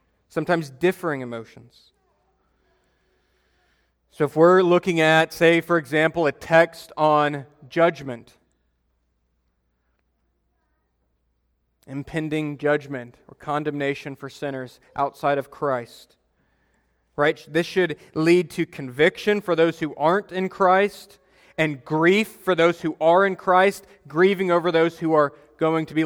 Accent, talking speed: American, 120 wpm